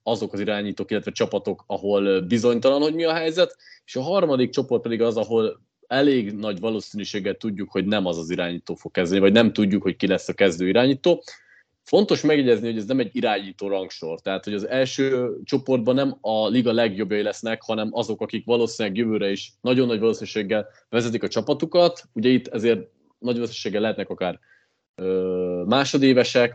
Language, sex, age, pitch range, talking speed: Hungarian, male, 20-39, 100-125 Hz, 170 wpm